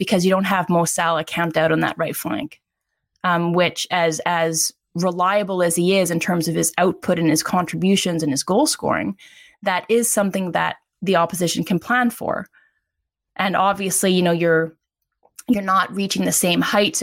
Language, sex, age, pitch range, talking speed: English, female, 20-39, 160-190 Hz, 185 wpm